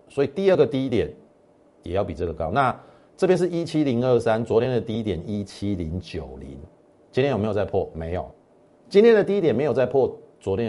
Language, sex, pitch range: Chinese, male, 85-120 Hz